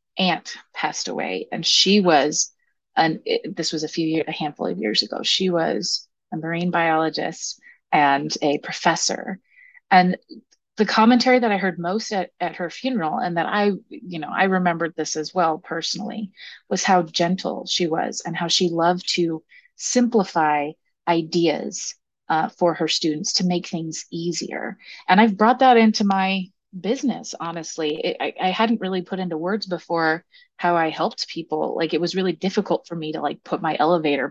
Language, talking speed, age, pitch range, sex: English, 175 wpm, 30-49, 165-200 Hz, female